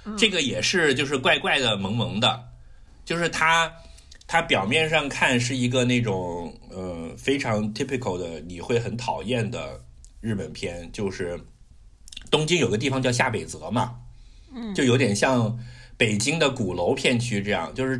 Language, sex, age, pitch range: Chinese, male, 50-69, 95-125 Hz